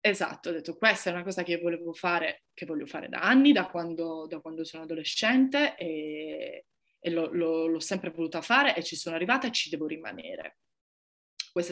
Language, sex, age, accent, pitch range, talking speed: Italian, female, 20-39, native, 170-240 Hz, 200 wpm